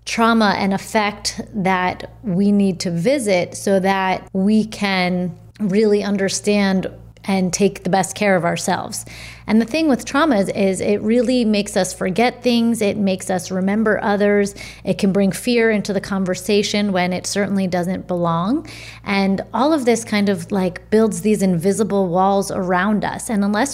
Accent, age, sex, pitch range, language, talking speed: American, 30-49, female, 185-215 Hz, English, 165 wpm